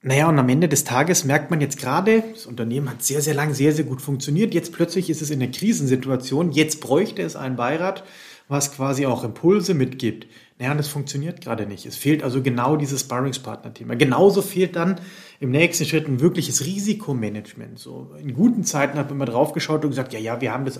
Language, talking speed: German, 215 wpm